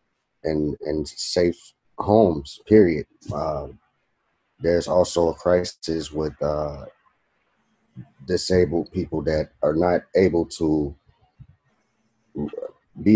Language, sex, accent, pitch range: English, male, American, 75-90 Hz